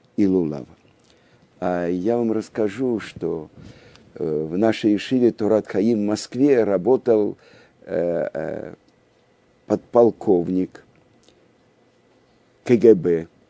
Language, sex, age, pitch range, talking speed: Russian, male, 50-69, 95-115 Hz, 60 wpm